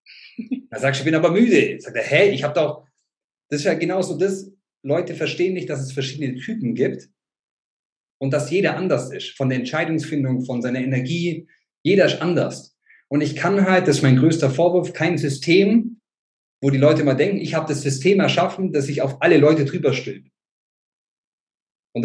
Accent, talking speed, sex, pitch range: German, 185 wpm, male, 135-175 Hz